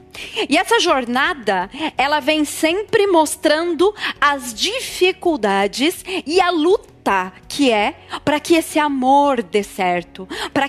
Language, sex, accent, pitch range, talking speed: Portuguese, female, Brazilian, 220-310 Hz, 120 wpm